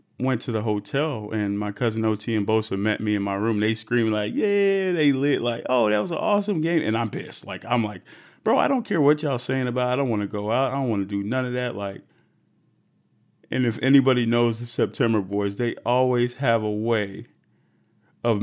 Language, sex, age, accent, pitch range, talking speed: English, male, 30-49, American, 105-125 Hz, 230 wpm